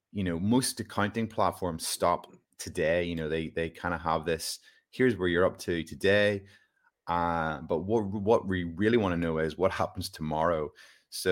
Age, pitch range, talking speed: 30-49, 85-100 Hz, 185 wpm